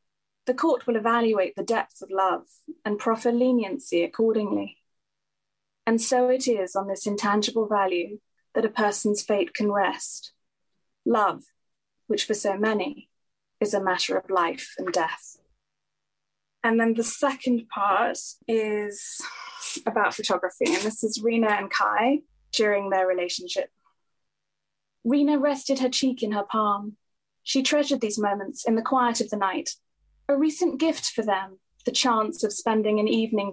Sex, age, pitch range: female, 20-39, 210-255 Hz